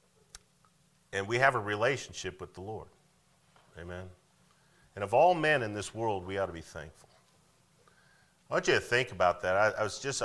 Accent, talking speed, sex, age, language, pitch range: American, 185 wpm, male, 40-59, English, 85-125 Hz